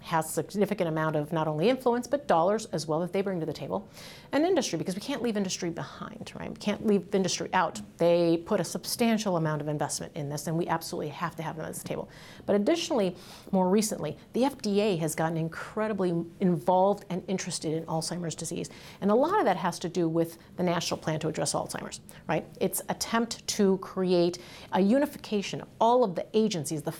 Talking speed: 210 wpm